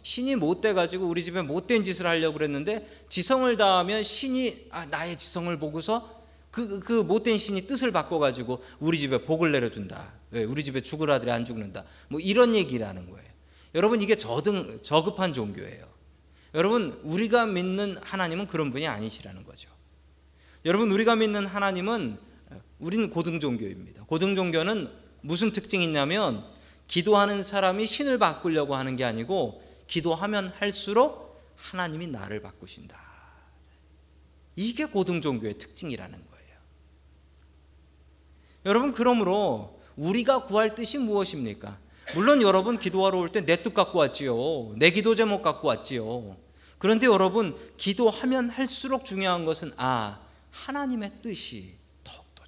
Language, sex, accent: Korean, male, native